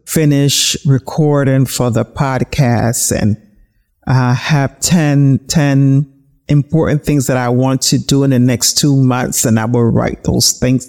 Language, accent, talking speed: English, American, 160 wpm